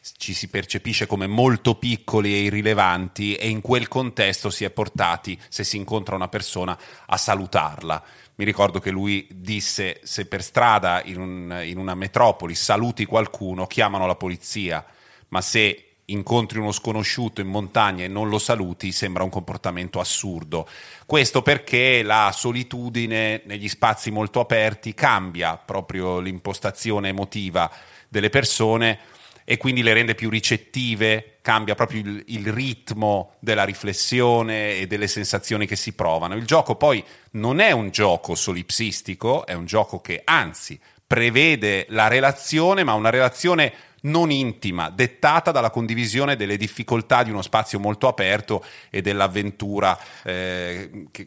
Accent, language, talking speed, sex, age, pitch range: native, Italian, 140 wpm, male, 30-49, 95-120 Hz